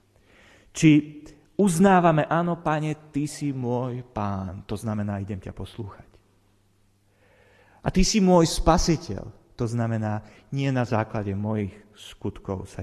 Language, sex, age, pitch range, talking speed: Slovak, male, 30-49, 100-125 Hz, 120 wpm